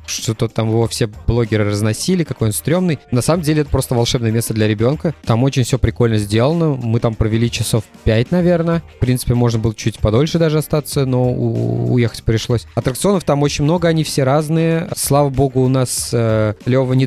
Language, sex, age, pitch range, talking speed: Russian, male, 20-39, 110-140 Hz, 190 wpm